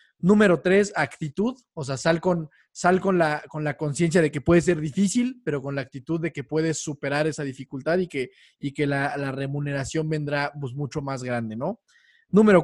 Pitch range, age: 145-190 Hz, 20-39